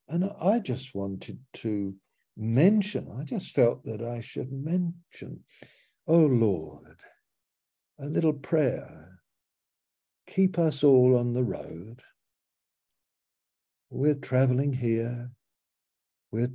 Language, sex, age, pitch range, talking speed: English, male, 60-79, 120-160 Hz, 100 wpm